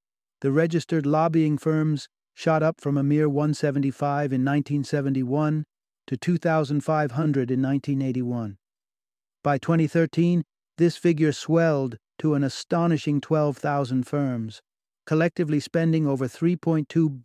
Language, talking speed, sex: English, 105 wpm, male